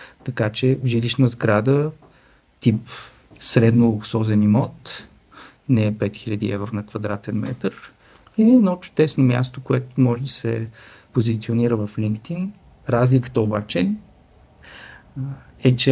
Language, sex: Bulgarian, male